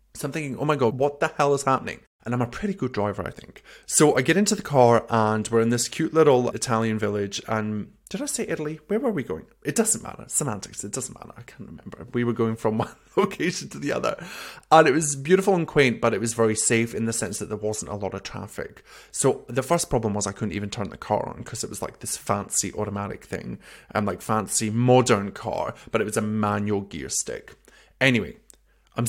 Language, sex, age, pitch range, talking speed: English, male, 20-39, 110-145 Hz, 240 wpm